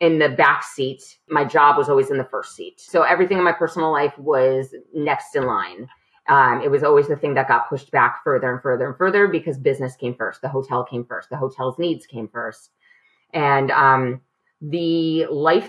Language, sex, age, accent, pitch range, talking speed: English, female, 30-49, American, 140-190 Hz, 205 wpm